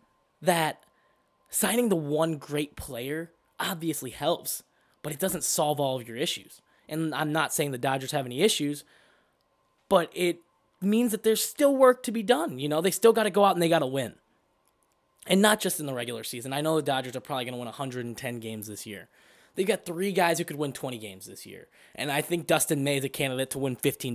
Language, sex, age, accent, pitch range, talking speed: English, male, 10-29, American, 125-170 Hz, 225 wpm